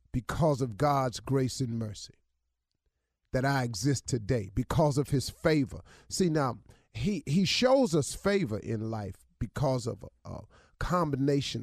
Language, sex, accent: English, male, American